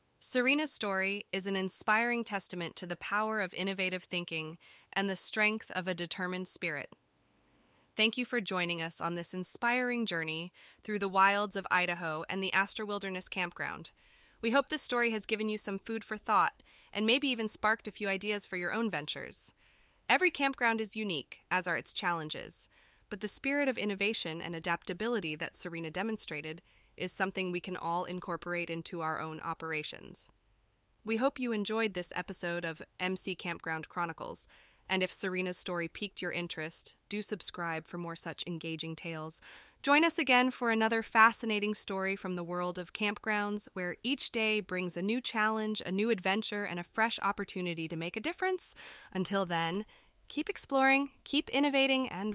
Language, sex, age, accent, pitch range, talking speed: English, female, 20-39, American, 175-220 Hz, 170 wpm